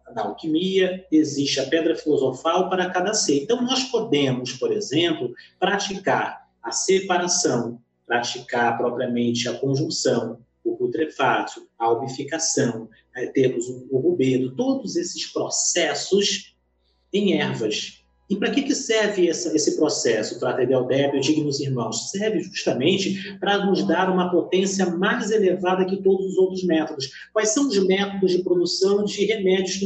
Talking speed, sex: 140 wpm, male